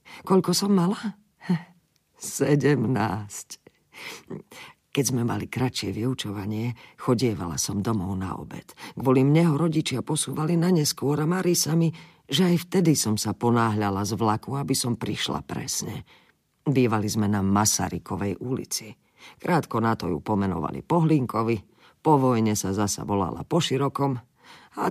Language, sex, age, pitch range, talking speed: Slovak, female, 50-69, 105-150 Hz, 125 wpm